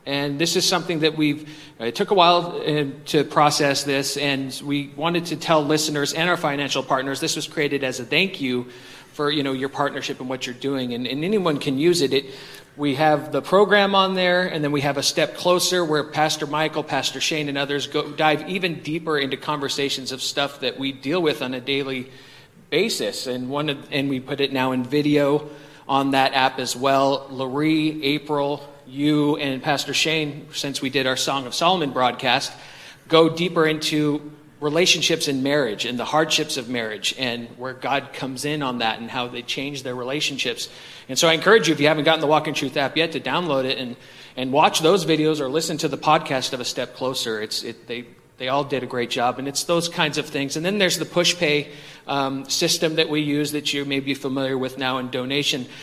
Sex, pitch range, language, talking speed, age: male, 135-155 Hz, English, 215 wpm, 40-59